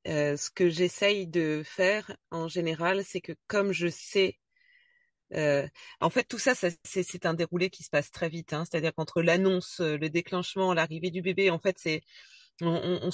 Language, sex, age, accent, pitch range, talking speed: French, female, 30-49, French, 165-195 Hz, 185 wpm